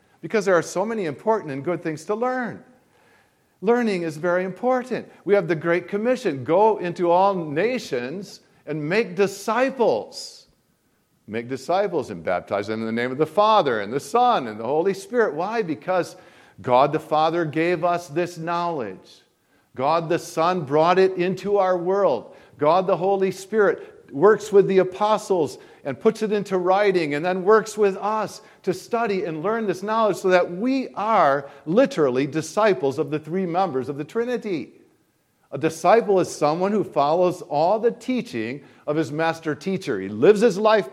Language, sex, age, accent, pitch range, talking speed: English, male, 50-69, American, 165-215 Hz, 170 wpm